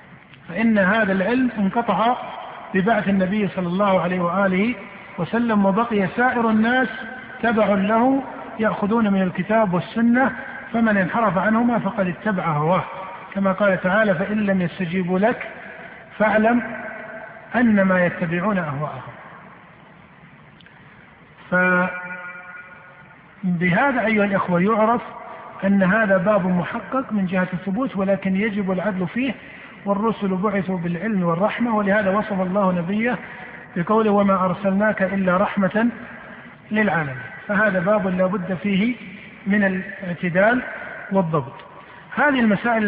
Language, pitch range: Arabic, 185-225 Hz